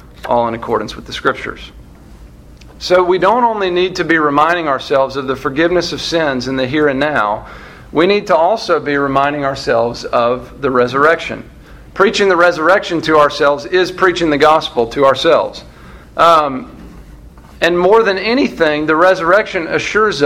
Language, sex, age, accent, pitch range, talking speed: English, male, 50-69, American, 125-175 Hz, 160 wpm